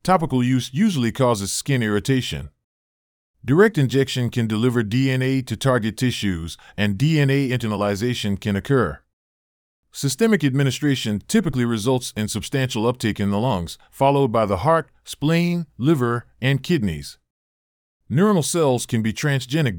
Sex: male